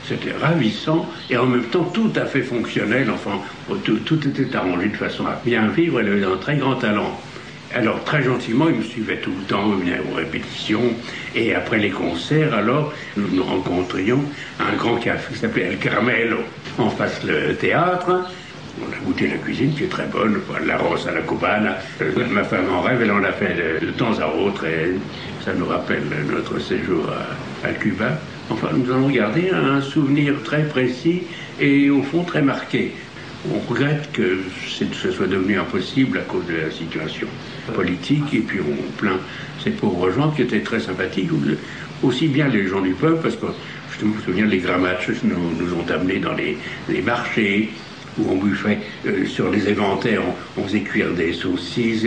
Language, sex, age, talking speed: French, male, 60-79, 190 wpm